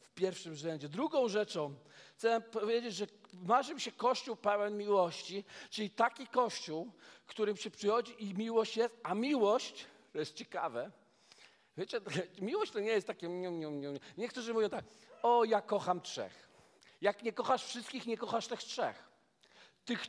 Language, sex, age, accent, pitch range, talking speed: Polish, male, 50-69, native, 205-250 Hz, 155 wpm